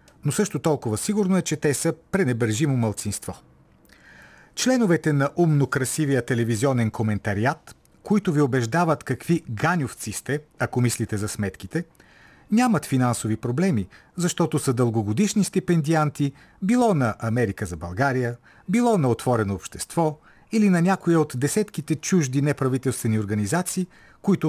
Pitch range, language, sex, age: 110-155 Hz, Bulgarian, male, 40-59